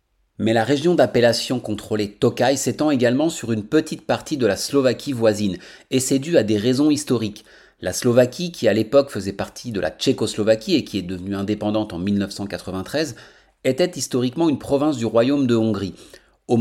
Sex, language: male, French